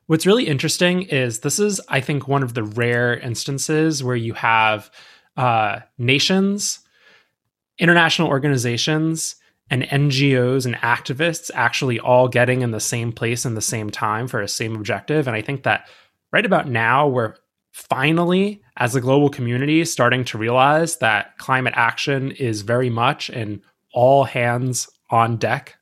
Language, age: English, 20-39